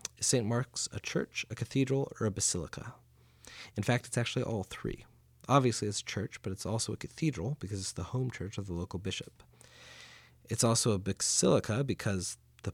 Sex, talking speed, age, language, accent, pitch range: male, 190 wpm, 30-49, English, American, 90-125 Hz